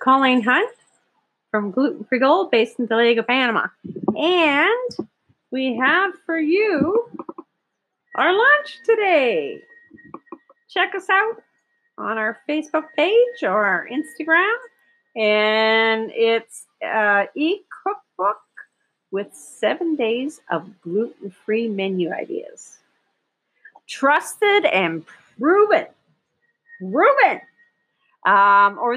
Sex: female